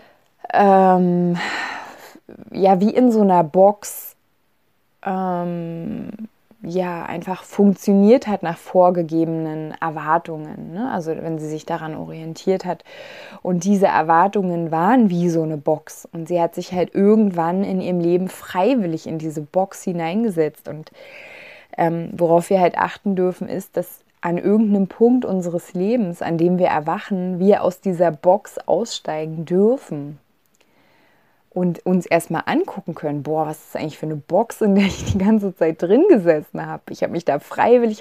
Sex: female